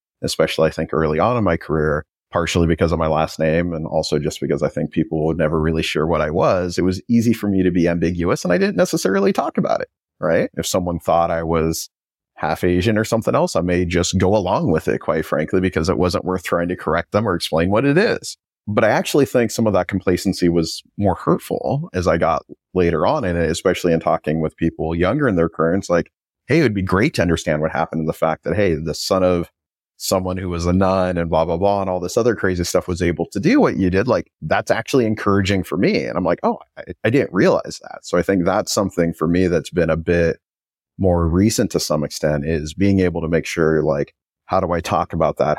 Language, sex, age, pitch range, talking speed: English, male, 30-49, 80-95 Hz, 245 wpm